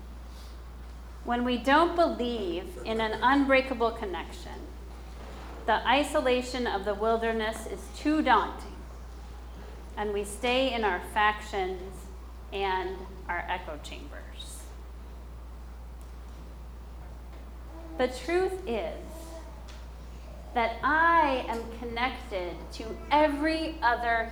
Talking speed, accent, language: 90 wpm, American, English